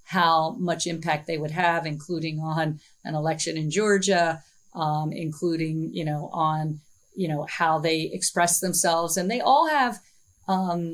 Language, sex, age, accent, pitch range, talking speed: English, female, 40-59, American, 160-185 Hz, 155 wpm